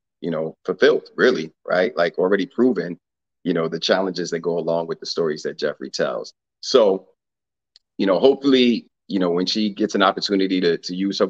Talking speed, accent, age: 190 wpm, American, 40-59